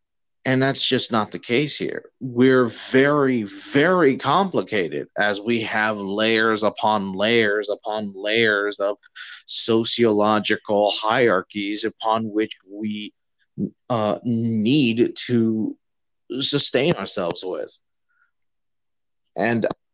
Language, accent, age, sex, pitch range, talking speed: English, American, 30-49, male, 110-140 Hz, 95 wpm